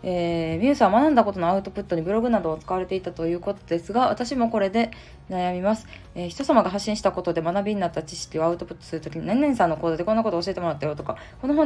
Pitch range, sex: 165-220 Hz, female